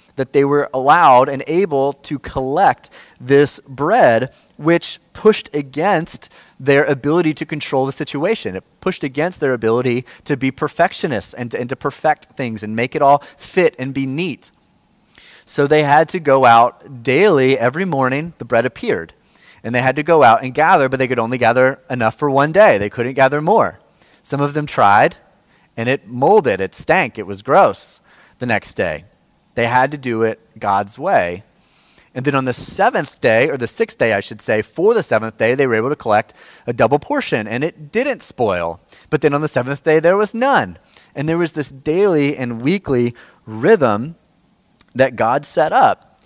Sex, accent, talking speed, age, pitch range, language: male, American, 185 wpm, 30-49, 125-155 Hz, English